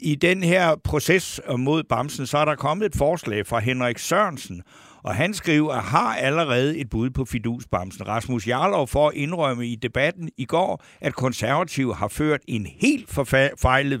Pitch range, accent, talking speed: 115-150 Hz, native, 175 wpm